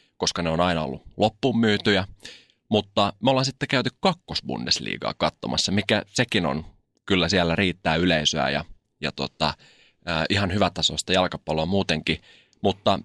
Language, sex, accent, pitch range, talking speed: Finnish, male, native, 80-110 Hz, 140 wpm